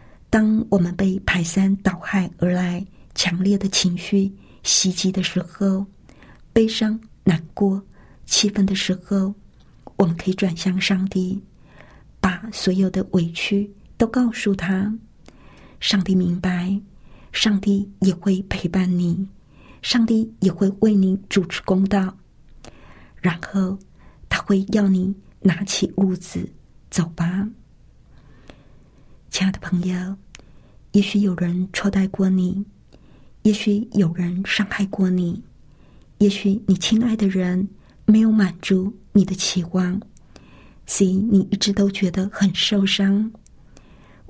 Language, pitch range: Chinese, 185-205 Hz